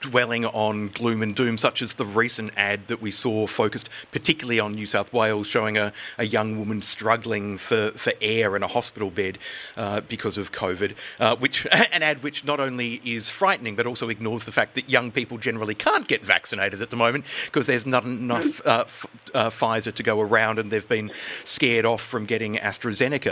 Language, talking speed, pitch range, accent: English, 200 wpm, 110-135 Hz, Australian